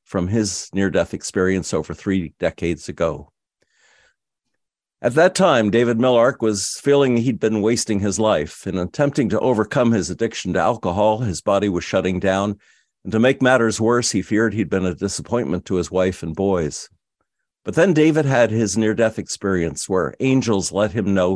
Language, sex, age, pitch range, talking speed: English, male, 50-69, 95-120 Hz, 170 wpm